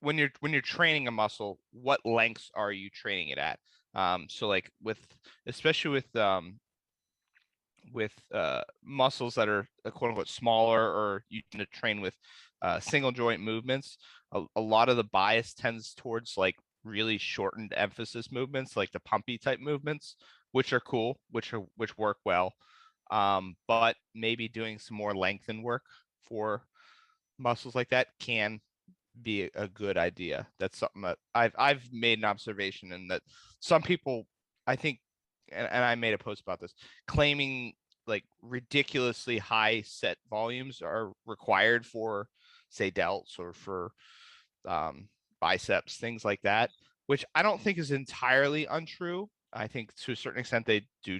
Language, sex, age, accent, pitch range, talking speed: English, male, 30-49, American, 110-140 Hz, 160 wpm